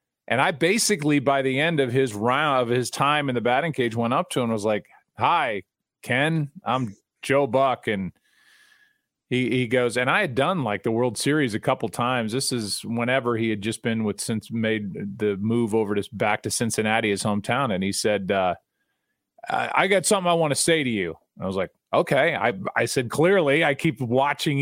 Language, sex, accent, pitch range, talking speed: English, male, American, 120-150 Hz, 210 wpm